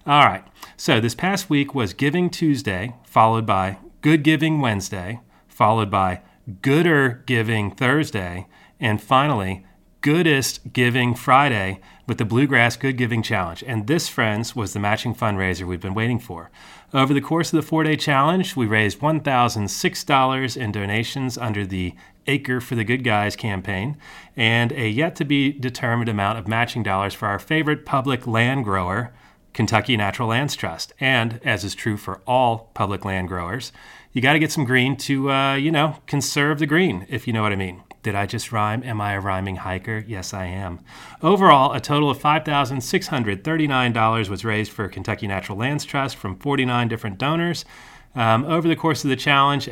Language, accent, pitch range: English, American, 105-140 Hz